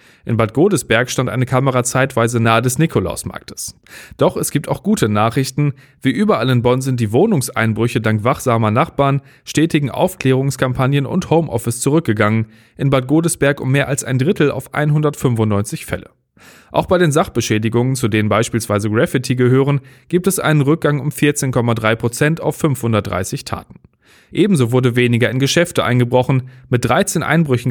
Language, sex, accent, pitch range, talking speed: German, male, German, 115-145 Hz, 150 wpm